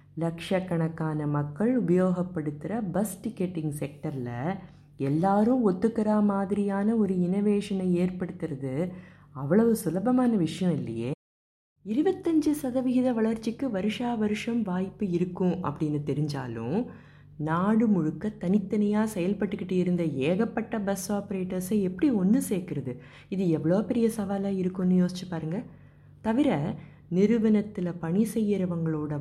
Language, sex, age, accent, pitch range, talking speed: Tamil, female, 20-39, native, 150-205 Hz, 95 wpm